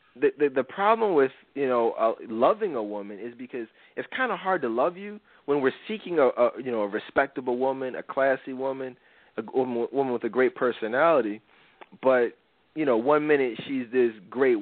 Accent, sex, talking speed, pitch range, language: American, male, 195 wpm, 130-175 Hz, English